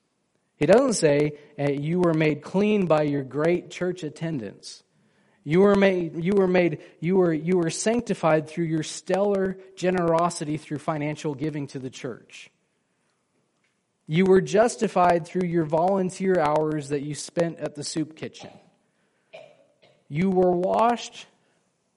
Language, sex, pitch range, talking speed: English, male, 160-200 Hz, 140 wpm